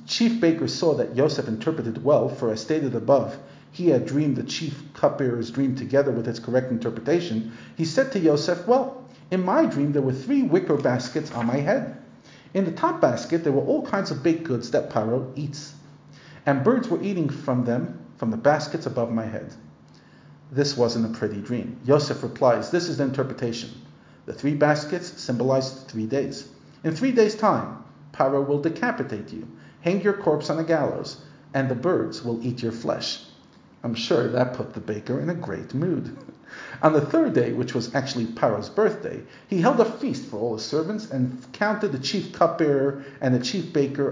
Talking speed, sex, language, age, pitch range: 190 wpm, male, English, 50-69, 120-165 Hz